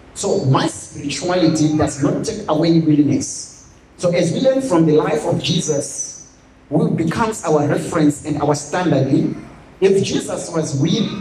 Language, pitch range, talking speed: English, 145-185 Hz, 150 wpm